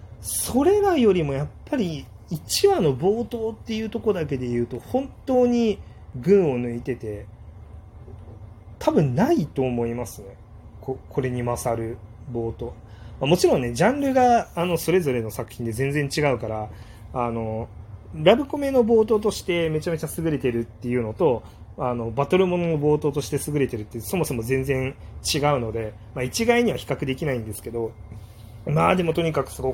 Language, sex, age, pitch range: Japanese, male, 30-49, 110-165 Hz